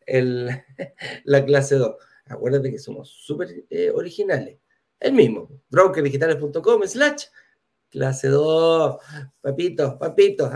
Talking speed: 100 wpm